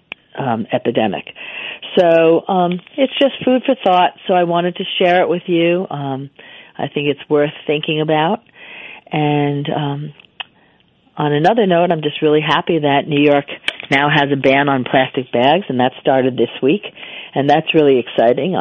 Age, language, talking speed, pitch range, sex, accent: 50-69, English, 170 wpm, 125-155 Hz, female, American